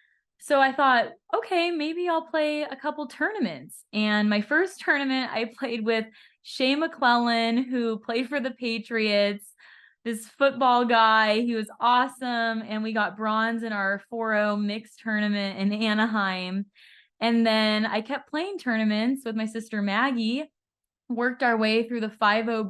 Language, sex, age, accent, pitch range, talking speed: English, female, 20-39, American, 200-245 Hz, 150 wpm